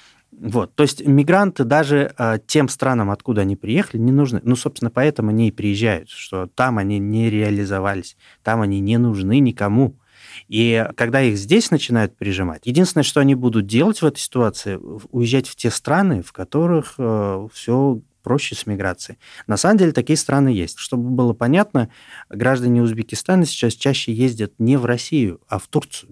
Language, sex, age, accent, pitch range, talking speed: Russian, male, 30-49, native, 105-135 Hz, 170 wpm